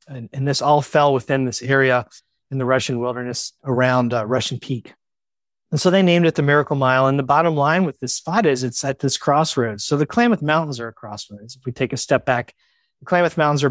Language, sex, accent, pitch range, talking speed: English, male, American, 125-140 Hz, 230 wpm